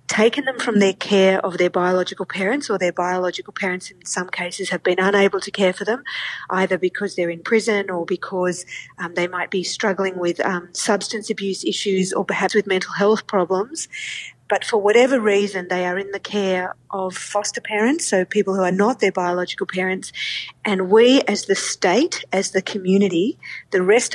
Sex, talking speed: female, 190 wpm